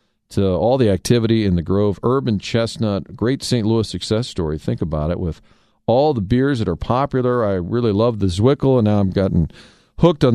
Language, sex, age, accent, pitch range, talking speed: English, male, 40-59, American, 100-135 Hz, 205 wpm